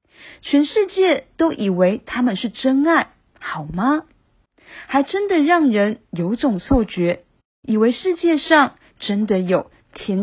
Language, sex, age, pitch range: Chinese, female, 40-59, 185-265 Hz